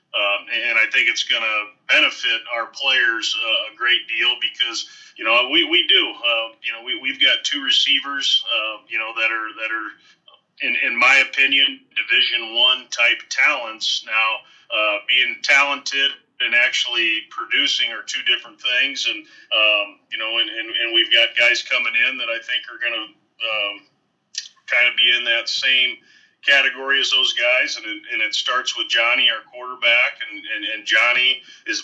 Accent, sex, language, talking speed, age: American, male, English, 185 wpm, 40-59